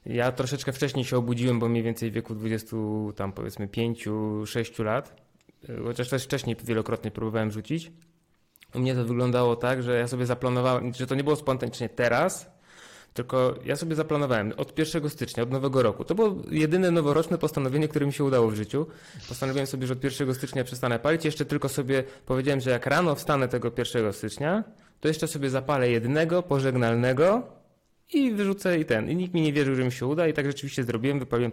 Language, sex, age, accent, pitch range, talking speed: Polish, male, 20-39, native, 115-135 Hz, 190 wpm